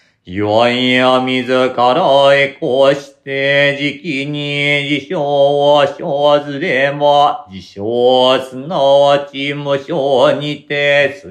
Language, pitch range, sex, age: Japanese, 140-145 Hz, male, 40-59